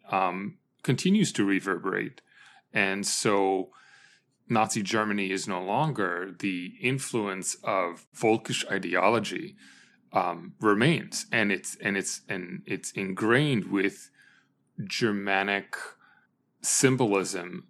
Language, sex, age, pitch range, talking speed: English, male, 30-49, 95-115 Hz, 95 wpm